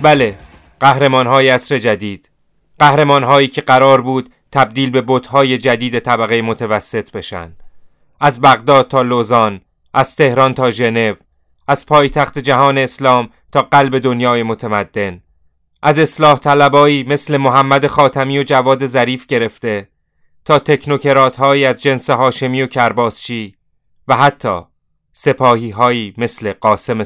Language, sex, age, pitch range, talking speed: Persian, male, 30-49, 115-145 Hz, 120 wpm